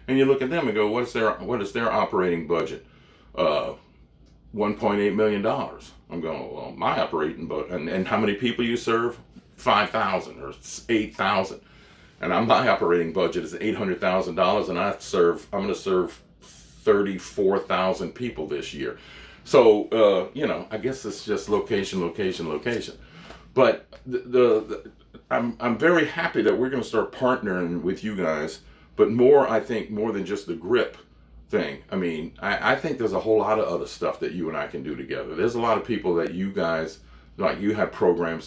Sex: male